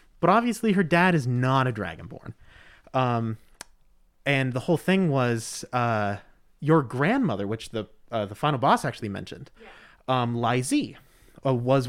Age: 30-49